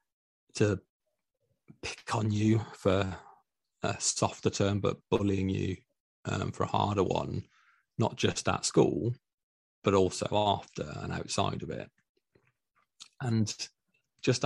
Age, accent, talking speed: 30-49, British, 120 wpm